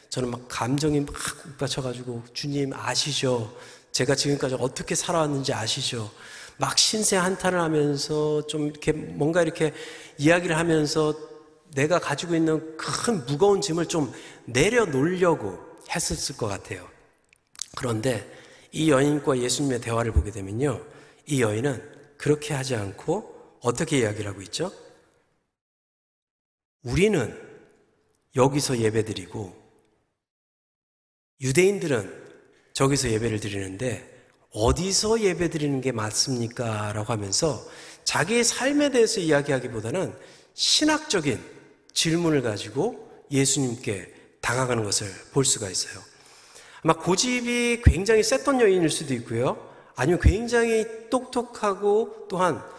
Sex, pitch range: male, 125-175 Hz